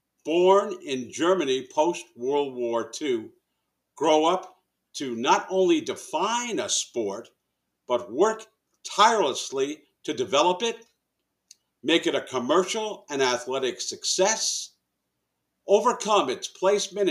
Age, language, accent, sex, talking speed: 50-69, English, American, male, 105 wpm